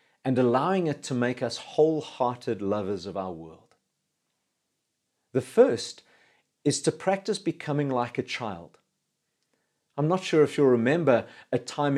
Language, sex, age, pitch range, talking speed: English, male, 40-59, 125-170 Hz, 140 wpm